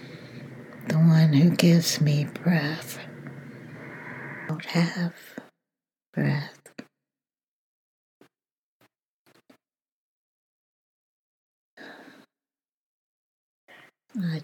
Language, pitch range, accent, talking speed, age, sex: English, 155-170 Hz, American, 45 wpm, 60-79, female